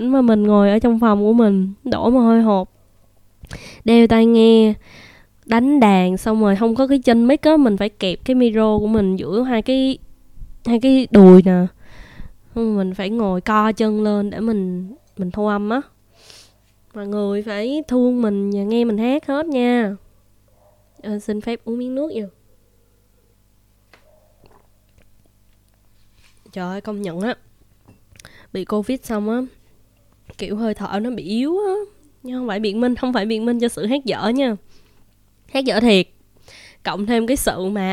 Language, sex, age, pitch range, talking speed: Vietnamese, female, 20-39, 185-240 Hz, 170 wpm